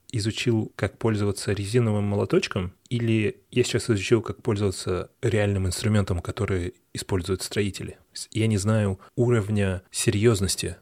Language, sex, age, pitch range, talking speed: Russian, male, 20-39, 95-120 Hz, 115 wpm